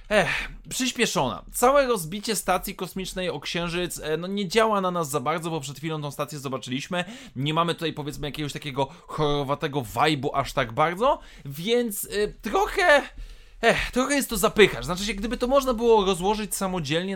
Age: 20-39